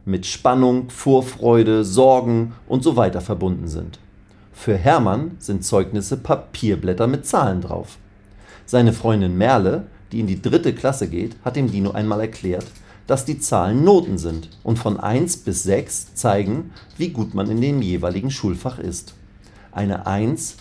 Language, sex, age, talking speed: German, male, 40-59, 150 wpm